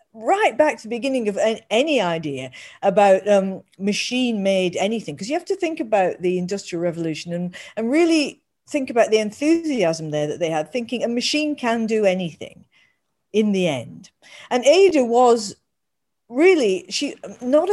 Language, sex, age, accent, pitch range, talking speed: English, female, 50-69, British, 180-270 Hz, 160 wpm